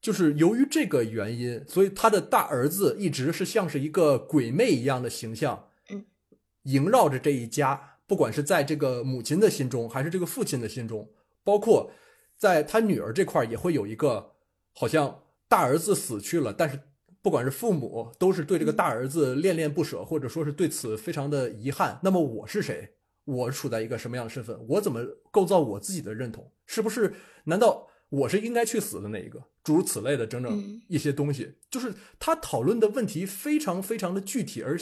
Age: 20-39